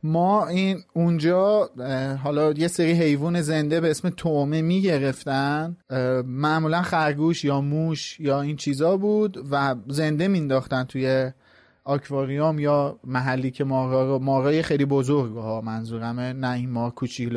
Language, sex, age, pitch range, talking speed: Persian, male, 30-49, 140-185 Hz, 130 wpm